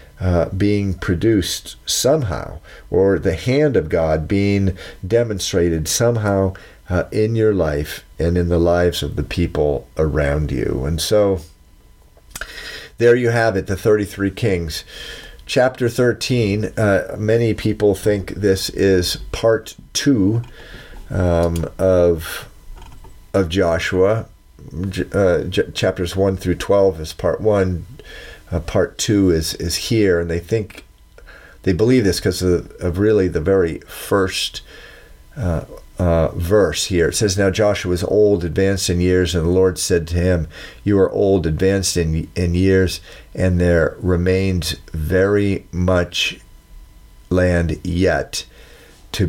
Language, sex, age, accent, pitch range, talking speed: English, male, 50-69, American, 85-105 Hz, 135 wpm